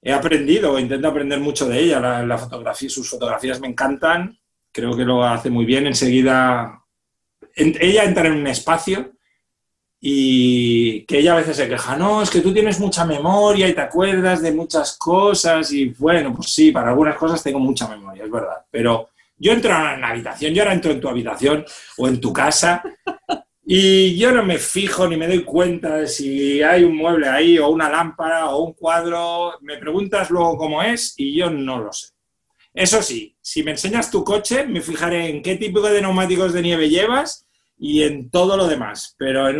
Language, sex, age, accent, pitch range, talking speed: Spanish, male, 40-59, Spanish, 135-180 Hz, 195 wpm